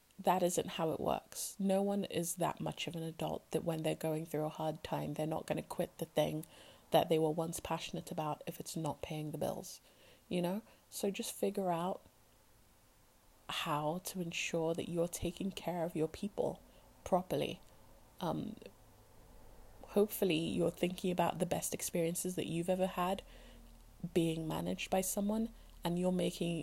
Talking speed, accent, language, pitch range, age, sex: 170 wpm, British, English, 155-190 Hz, 20-39, female